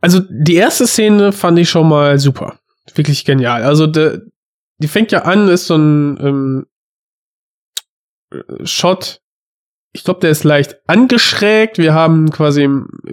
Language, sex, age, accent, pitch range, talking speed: German, male, 20-39, German, 145-180 Hz, 140 wpm